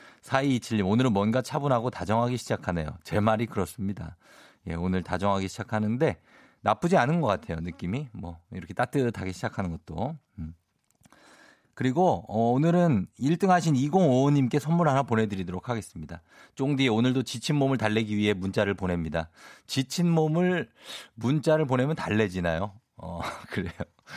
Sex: male